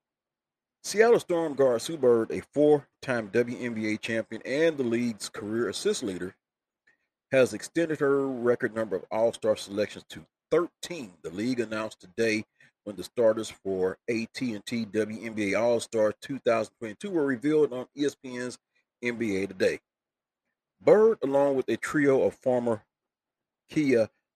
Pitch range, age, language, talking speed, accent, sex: 105-125 Hz, 40-59, English, 125 wpm, American, male